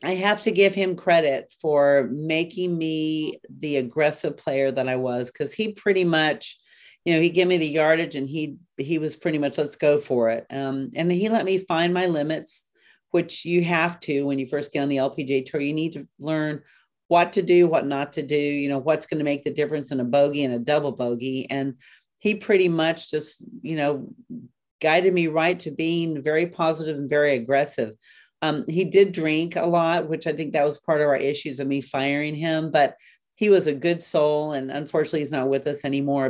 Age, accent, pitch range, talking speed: 40-59, American, 140-170 Hz, 215 wpm